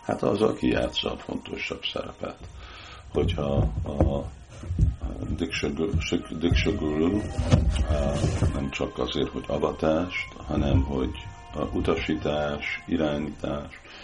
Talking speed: 100 wpm